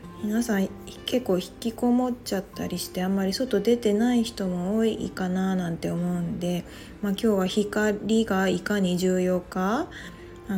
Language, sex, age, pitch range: Japanese, female, 20-39, 185-225 Hz